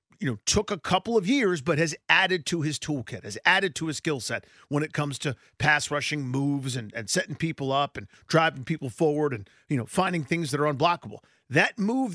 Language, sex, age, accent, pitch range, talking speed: English, male, 40-59, American, 140-190 Hz, 220 wpm